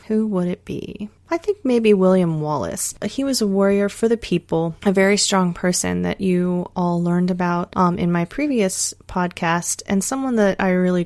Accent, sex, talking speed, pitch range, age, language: American, female, 190 wpm, 170-215 Hz, 30-49, English